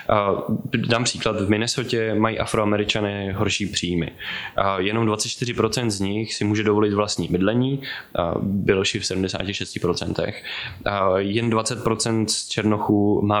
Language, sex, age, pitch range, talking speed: Czech, male, 20-39, 100-115 Hz, 115 wpm